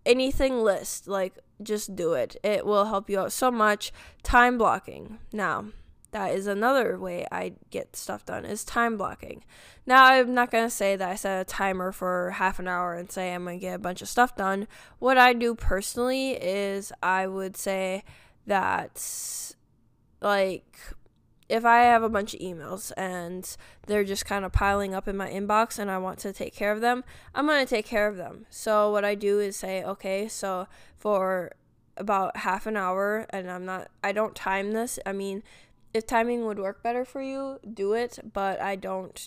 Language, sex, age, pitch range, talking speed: English, female, 10-29, 185-225 Hz, 195 wpm